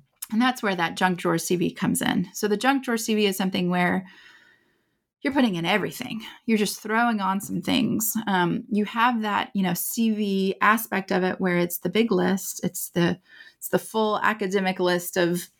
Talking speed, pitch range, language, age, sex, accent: 190 wpm, 185-230 Hz, English, 30-49, female, American